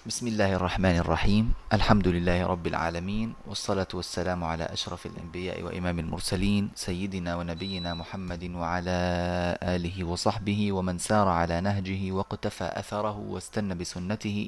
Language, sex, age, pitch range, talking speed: Arabic, male, 30-49, 90-115 Hz, 120 wpm